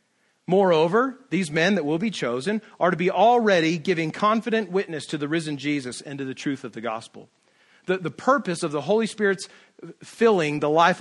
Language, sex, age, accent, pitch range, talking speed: English, male, 40-59, American, 155-215 Hz, 190 wpm